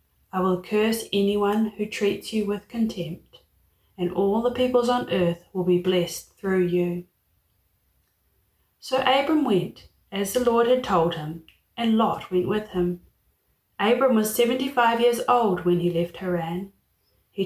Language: English